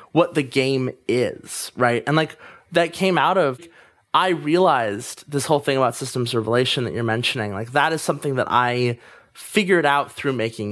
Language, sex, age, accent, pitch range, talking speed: English, male, 20-39, American, 120-140 Hz, 180 wpm